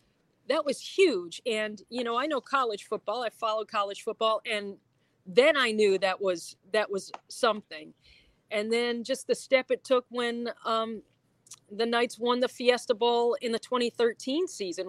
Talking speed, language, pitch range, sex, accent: 170 wpm, English, 210-255 Hz, female, American